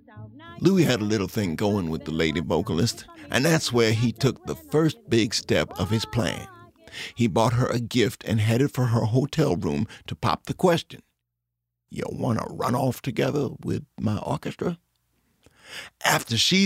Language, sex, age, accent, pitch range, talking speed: English, male, 50-69, American, 95-130 Hz, 175 wpm